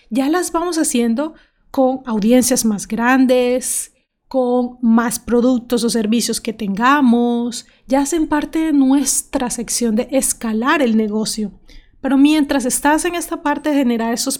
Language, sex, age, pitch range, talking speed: Spanish, female, 30-49, 235-285 Hz, 140 wpm